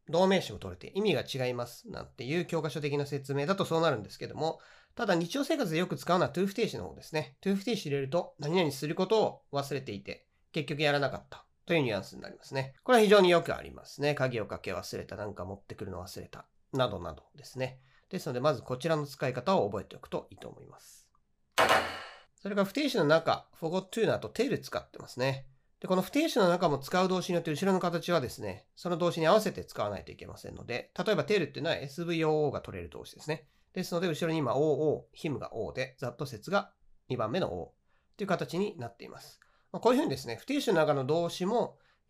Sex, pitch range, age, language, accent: male, 140-190 Hz, 40-59, Japanese, native